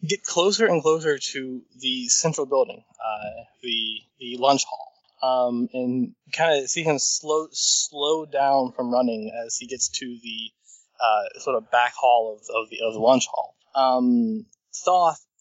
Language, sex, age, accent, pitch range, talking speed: English, male, 20-39, American, 125-155 Hz, 170 wpm